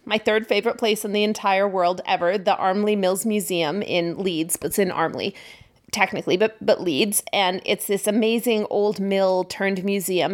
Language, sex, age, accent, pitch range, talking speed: English, female, 30-49, American, 195-235 Hz, 180 wpm